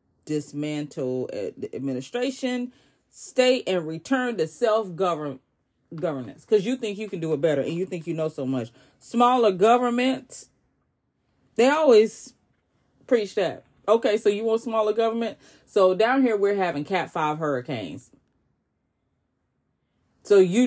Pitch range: 150-220 Hz